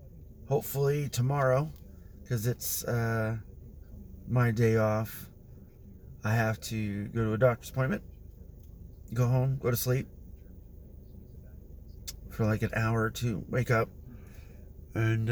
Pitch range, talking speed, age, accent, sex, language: 90-125 Hz, 120 wpm, 30-49, American, male, English